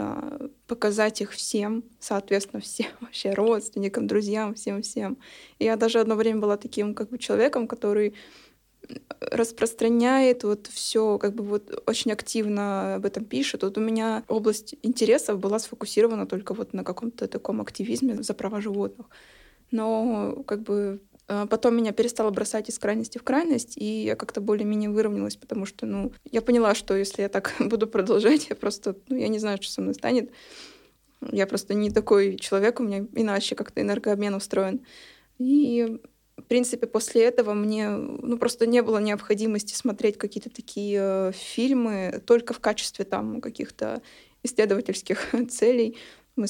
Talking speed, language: 150 wpm, Russian